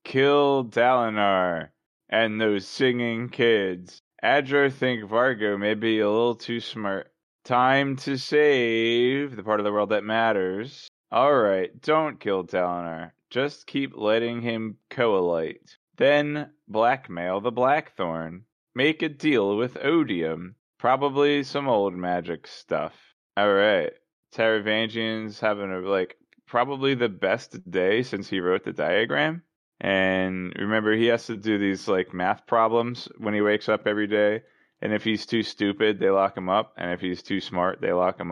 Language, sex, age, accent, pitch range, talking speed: English, male, 20-39, American, 95-115 Hz, 150 wpm